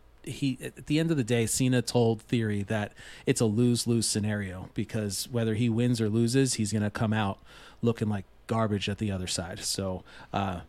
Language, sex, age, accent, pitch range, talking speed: English, male, 30-49, American, 105-130 Hz, 195 wpm